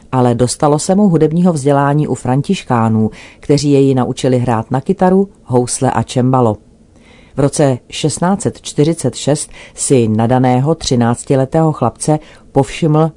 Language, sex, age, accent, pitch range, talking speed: Czech, female, 40-59, native, 125-155 Hz, 115 wpm